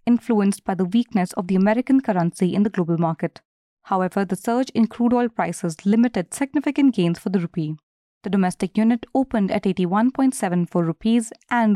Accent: Indian